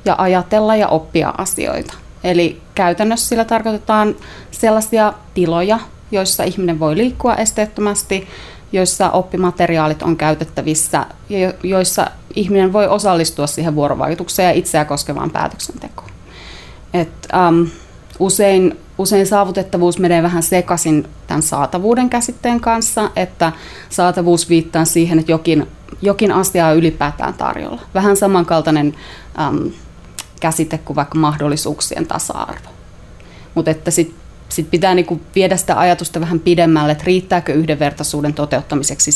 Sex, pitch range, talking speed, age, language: female, 160-195 Hz, 115 wpm, 30-49, Finnish